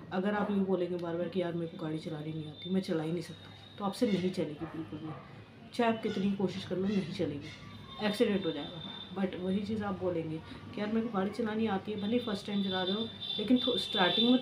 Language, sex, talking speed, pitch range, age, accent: Hindi, female, 240 wpm, 170-215 Hz, 30-49, native